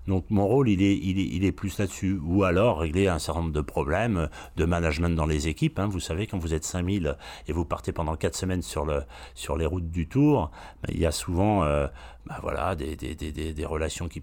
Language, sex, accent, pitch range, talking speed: French, male, French, 80-95 Hz, 250 wpm